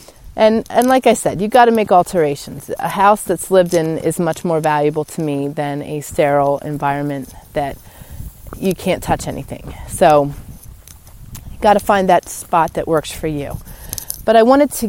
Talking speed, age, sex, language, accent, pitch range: 180 wpm, 30-49, female, English, American, 150-190 Hz